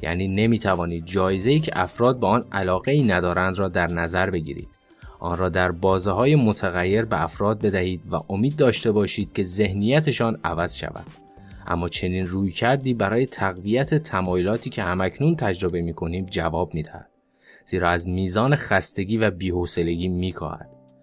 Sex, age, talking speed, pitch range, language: male, 20-39, 155 wpm, 90-115 Hz, Persian